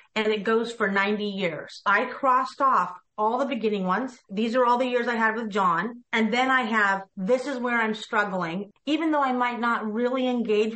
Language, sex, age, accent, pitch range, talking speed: English, female, 40-59, American, 200-255 Hz, 210 wpm